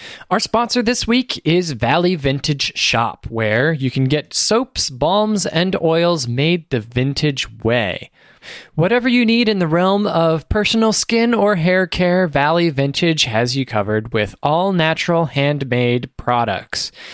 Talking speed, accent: 145 wpm, American